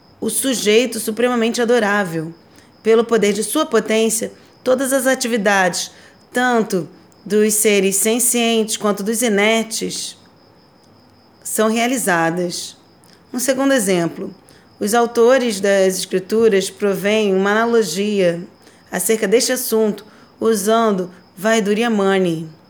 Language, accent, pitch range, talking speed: Portuguese, Brazilian, 185-230 Hz, 95 wpm